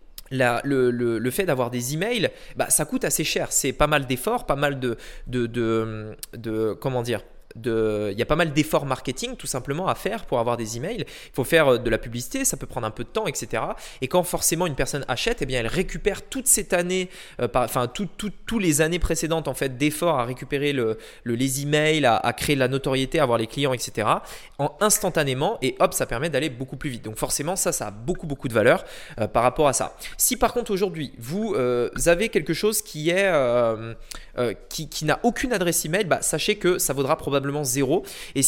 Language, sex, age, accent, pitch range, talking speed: French, male, 20-39, French, 130-185 Hz, 230 wpm